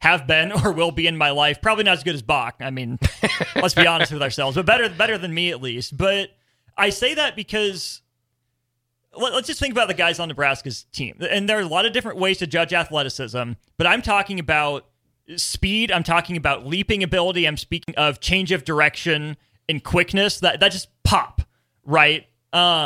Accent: American